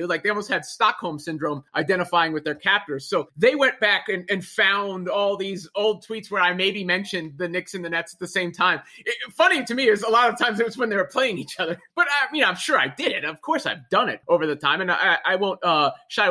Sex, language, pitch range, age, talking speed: male, English, 185-285 Hz, 30-49, 265 wpm